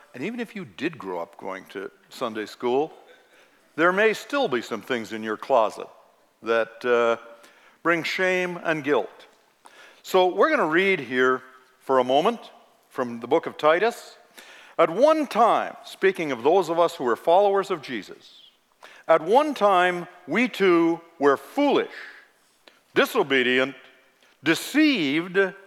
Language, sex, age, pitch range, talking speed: English, male, 60-79, 135-200 Hz, 145 wpm